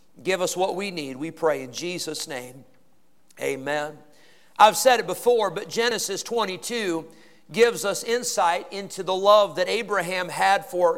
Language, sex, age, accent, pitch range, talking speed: English, male, 50-69, American, 195-275 Hz, 155 wpm